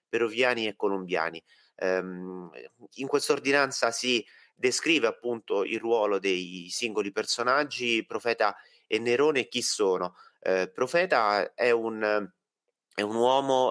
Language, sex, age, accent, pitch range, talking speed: Italian, male, 30-49, native, 95-120 Hz, 120 wpm